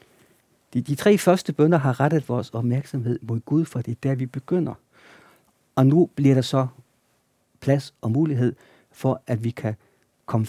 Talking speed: 165 wpm